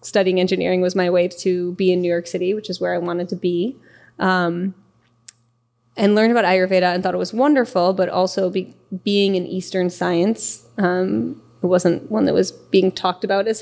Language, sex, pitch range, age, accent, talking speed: English, female, 175-195 Hz, 20-39, American, 200 wpm